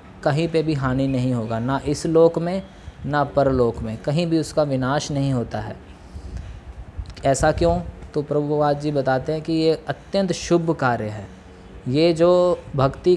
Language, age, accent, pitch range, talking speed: Hindi, 20-39, native, 135-160 Hz, 165 wpm